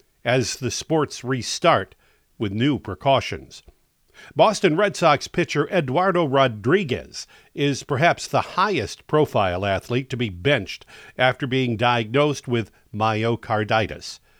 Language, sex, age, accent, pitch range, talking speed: English, male, 50-69, American, 115-155 Hz, 110 wpm